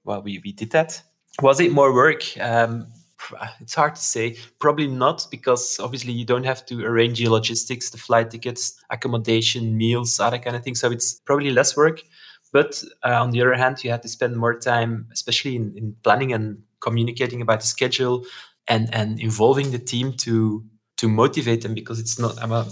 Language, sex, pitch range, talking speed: English, male, 115-130 Hz, 195 wpm